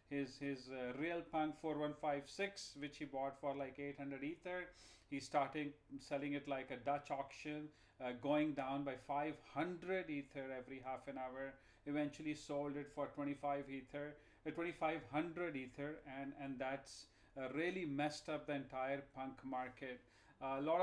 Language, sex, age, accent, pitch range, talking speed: English, male, 40-59, Indian, 140-165 Hz, 180 wpm